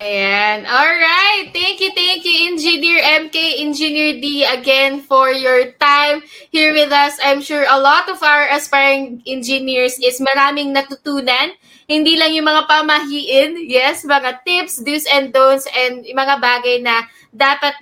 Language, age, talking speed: Filipino, 20-39, 150 wpm